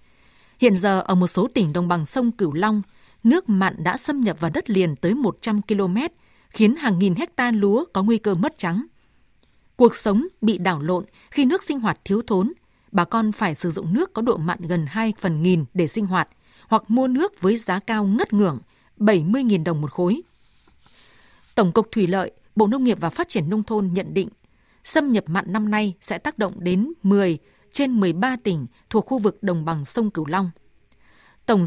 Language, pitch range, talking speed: Vietnamese, 180-225 Hz, 200 wpm